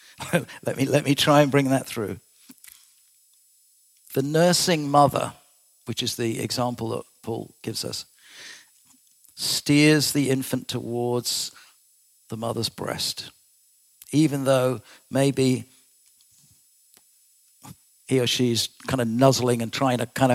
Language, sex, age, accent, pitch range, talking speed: English, male, 50-69, British, 120-150 Hz, 120 wpm